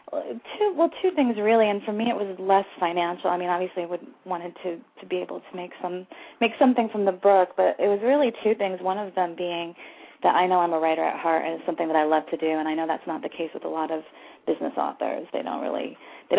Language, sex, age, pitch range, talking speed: English, female, 30-49, 165-210 Hz, 265 wpm